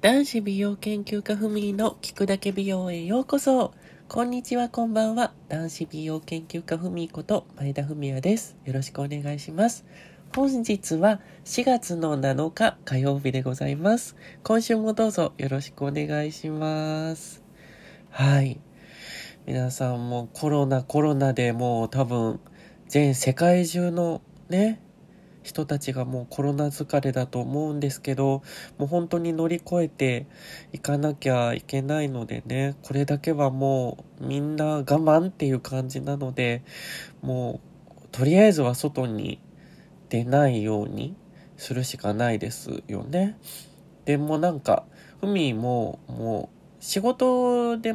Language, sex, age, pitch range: Japanese, male, 20-39, 135-185 Hz